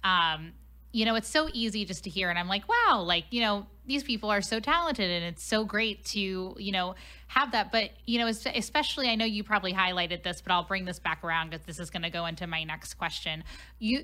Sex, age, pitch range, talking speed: female, 10-29, 180-220 Hz, 245 wpm